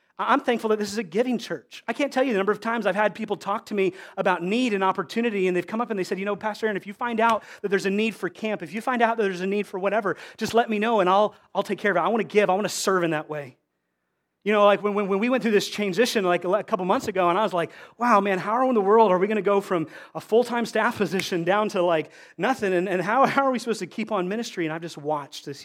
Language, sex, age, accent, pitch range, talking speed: English, male, 30-49, American, 155-210 Hz, 315 wpm